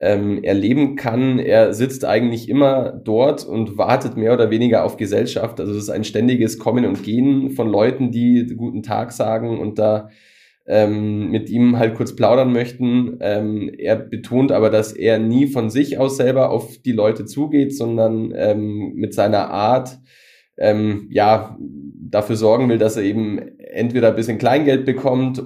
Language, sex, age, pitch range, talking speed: German, male, 20-39, 105-120 Hz, 165 wpm